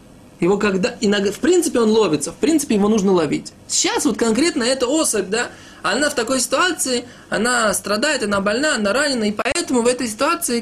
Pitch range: 180-230 Hz